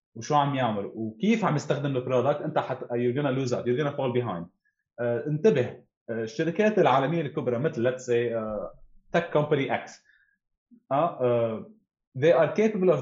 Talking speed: 145 wpm